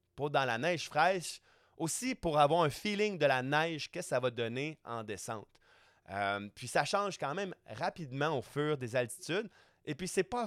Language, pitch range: French, 130-170 Hz